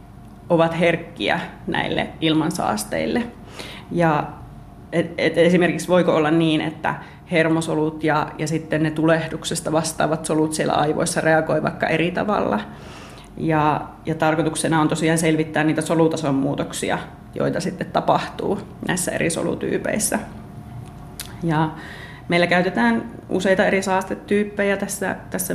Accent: native